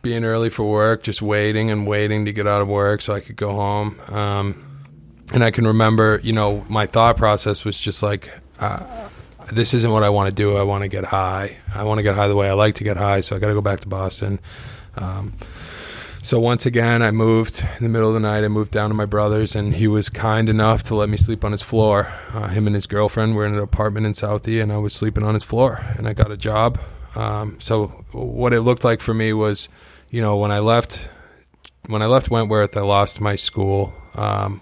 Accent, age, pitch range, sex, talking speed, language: American, 20-39, 100-110 Hz, male, 245 wpm, English